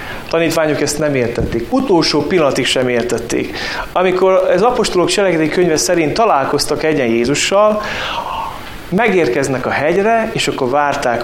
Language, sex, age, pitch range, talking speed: Hungarian, male, 30-49, 120-170 Hz, 125 wpm